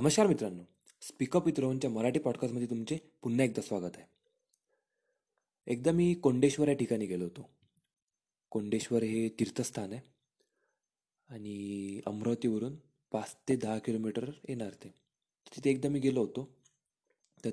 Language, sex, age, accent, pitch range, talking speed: Marathi, male, 20-39, native, 105-130 Hz, 115 wpm